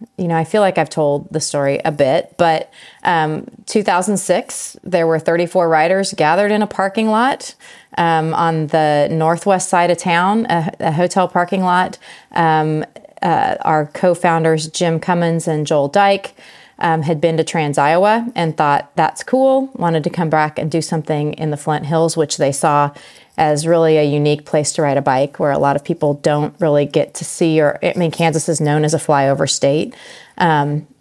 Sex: female